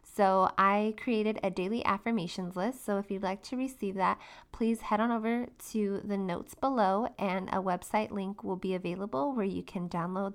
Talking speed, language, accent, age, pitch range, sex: 190 wpm, English, American, 20-39, 195-230 Hz, female